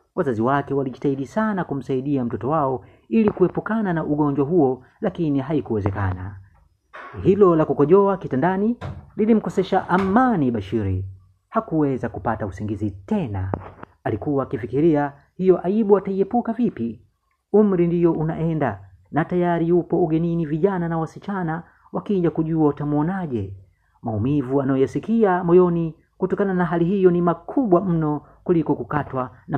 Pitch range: 120-180 Hz